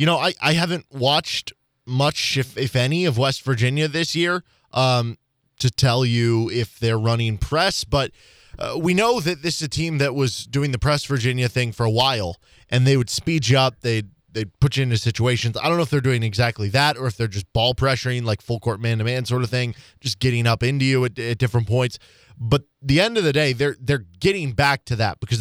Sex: male